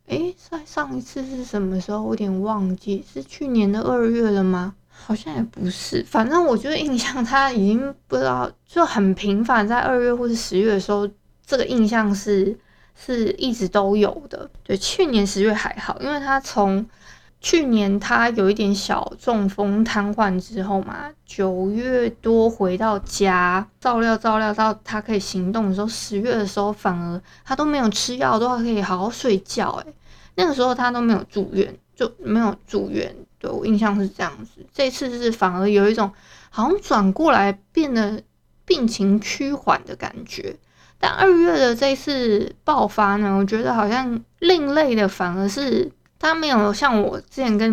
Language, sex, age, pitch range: Chinese, female, 20-39, 195-250 Hz